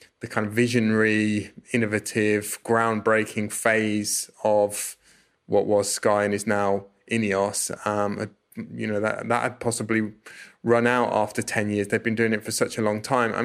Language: English